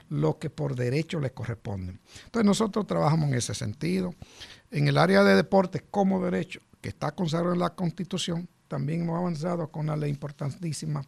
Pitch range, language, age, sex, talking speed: 125-165 Hz, Spanish, 60-79, male, 175 wpm